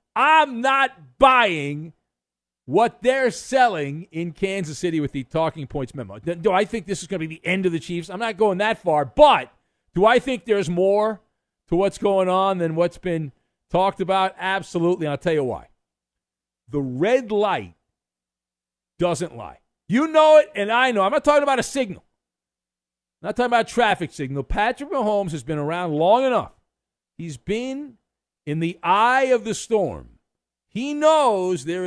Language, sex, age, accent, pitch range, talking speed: English, male, 50-69, American, 150-235 Hz, 180 wpm